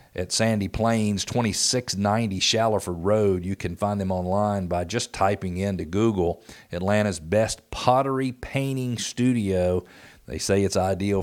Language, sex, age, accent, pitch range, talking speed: English, male, 50-69, American, 90-110 Hz, 135 wpm